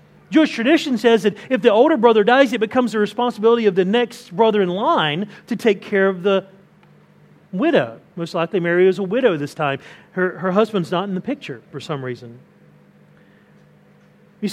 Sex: male